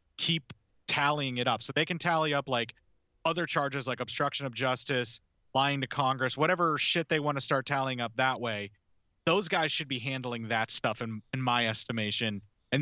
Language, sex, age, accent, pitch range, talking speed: English, male, 30-49, American, 115-145 Hz, 190 wpm